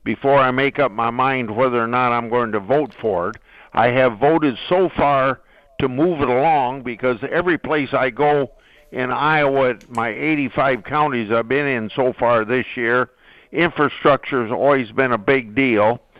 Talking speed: 180 wpm